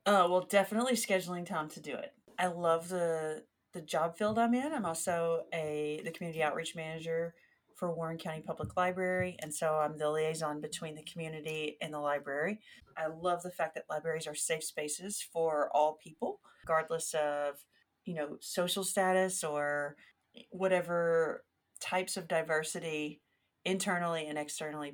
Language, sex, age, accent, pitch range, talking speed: English, female, 40-59, American, 150-175 Hz, 155 wpm